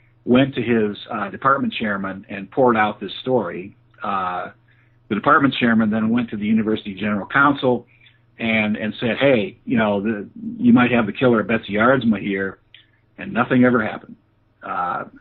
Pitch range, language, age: 110-130 Hz, English, 50-69